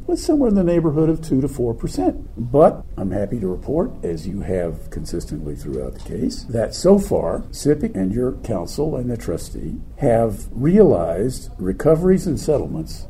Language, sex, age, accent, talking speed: English, male, 50-69, American, 170 wpm